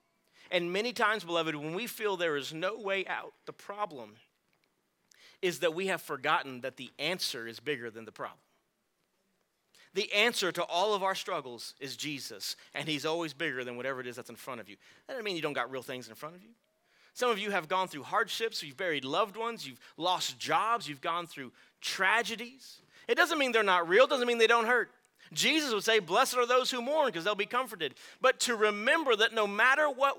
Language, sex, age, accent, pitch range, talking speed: English, male, 30-49, American, 155-235 Hz, 220 wpm